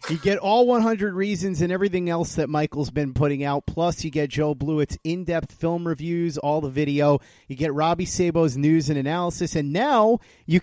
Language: English